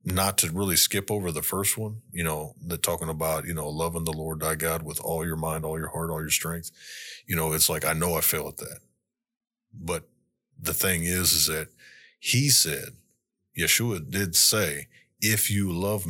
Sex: male